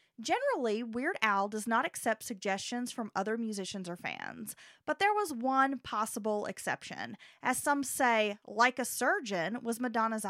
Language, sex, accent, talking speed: English, female, American, 150 wpm